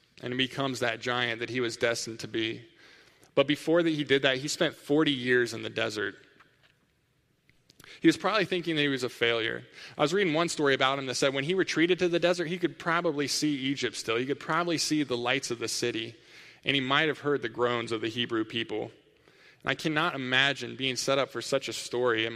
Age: 20-39